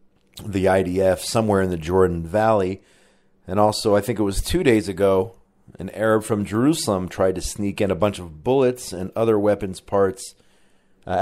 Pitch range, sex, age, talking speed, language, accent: 90-110 Hz, male, 40-59, 175 wpm, English, American